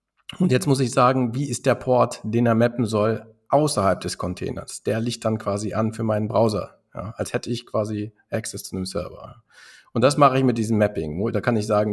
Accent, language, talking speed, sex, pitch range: German, German, 215 wpm, male, 105-125 Hz